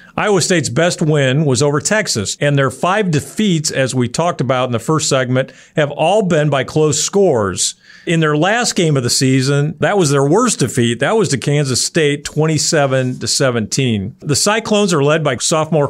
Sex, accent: male, American